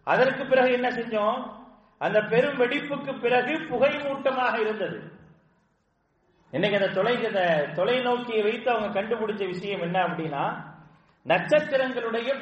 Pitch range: 180-235 Hz